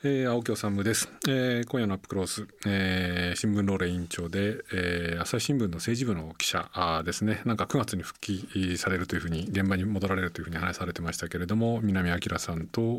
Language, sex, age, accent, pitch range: Japanese, male, 40-59, native, 90-110 Hz